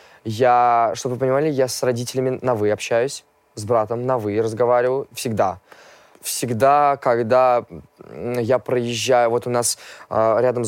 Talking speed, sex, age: 135 wpm, male, 20-39